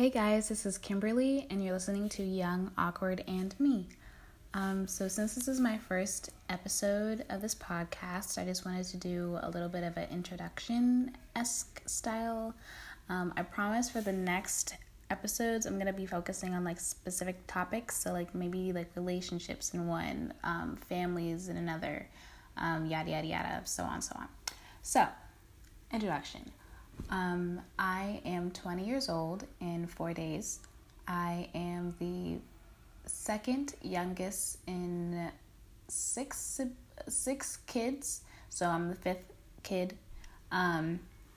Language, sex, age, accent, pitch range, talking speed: English, female, 10-29, American, 175-200 Hz, 140 wpm